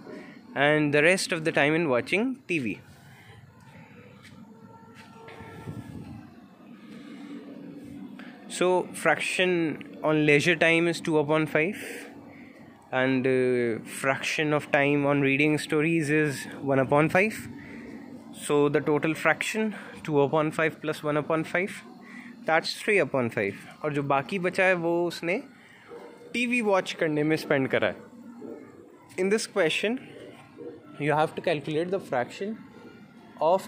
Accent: Indian